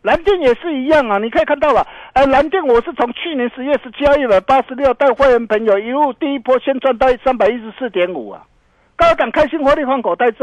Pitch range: 190-280 Hz